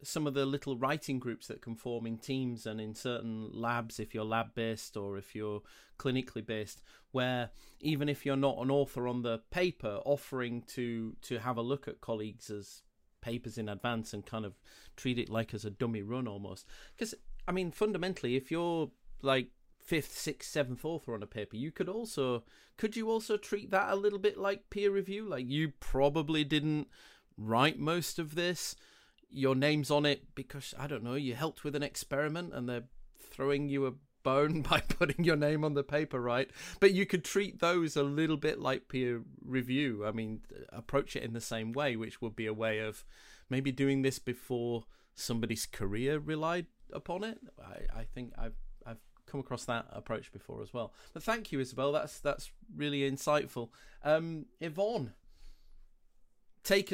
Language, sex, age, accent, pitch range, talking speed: English, male, 30-49, British, 115-155 Hz, 185 wpm